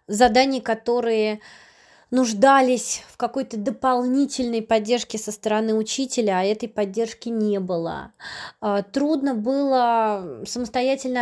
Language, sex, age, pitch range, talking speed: Russian, female, 20-39, 205-255 Hz, 95 wpm